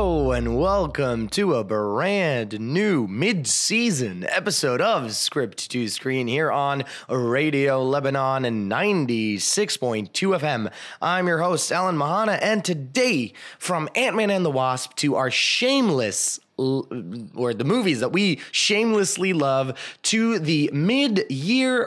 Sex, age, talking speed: male, 20-39, 125 wpm